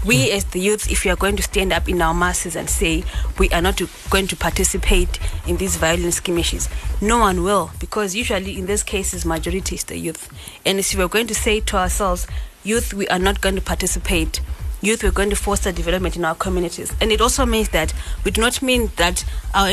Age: 20-39